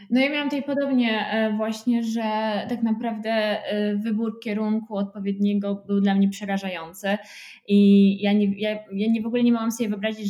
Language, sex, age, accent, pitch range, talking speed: Polish, female, 20-39, native, 205-230 Hz, 165 wpm